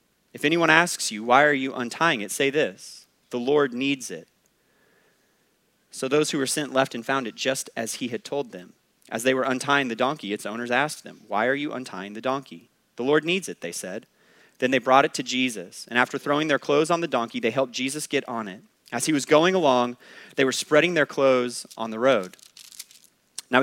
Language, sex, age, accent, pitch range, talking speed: English, male, 30-49, American, 125-155 Hz, 220 wpm